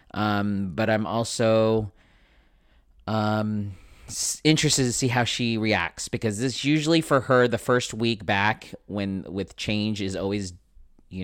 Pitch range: 100-130 Hz